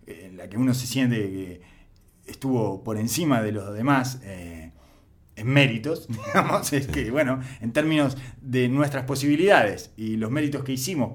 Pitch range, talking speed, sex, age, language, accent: 115-155 Hz, 160 wpm, male, 20-39, Spanish, Argentinian